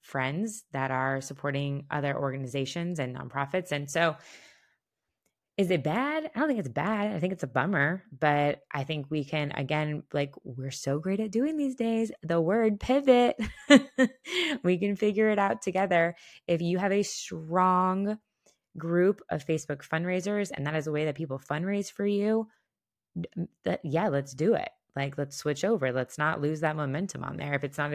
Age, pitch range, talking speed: 20-39, 145-200 Hz, 180 wpm